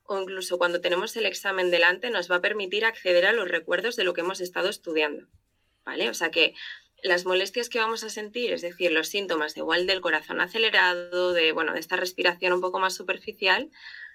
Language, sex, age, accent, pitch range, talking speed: Spanish, female, 20-39, Spanish, 175-205 Hz, 210 wpm